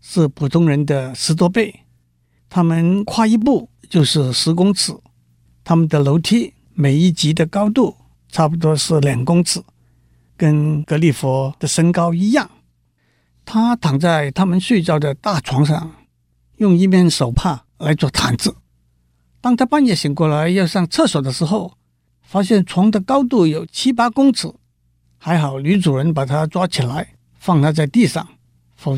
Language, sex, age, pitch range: Chinese, male, 60-79, 130-180 Hz